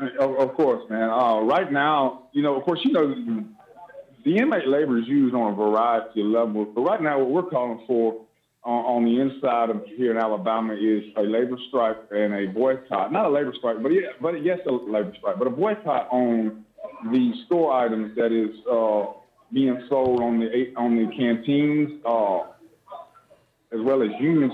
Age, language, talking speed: 30-49, English, 195 wpm